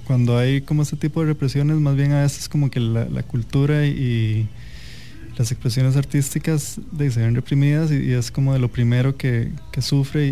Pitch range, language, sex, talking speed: 120-140 Hz, English, male, 200 wpm